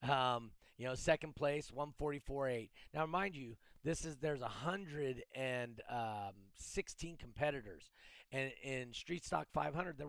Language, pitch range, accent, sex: English, 115-150 Hz, American, male